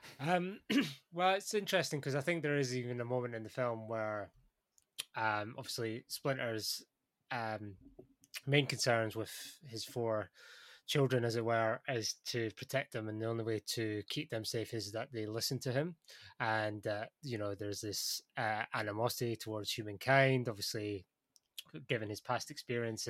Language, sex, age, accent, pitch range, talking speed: English, male, 20-39, British, 110-135 Hz, 160 wpm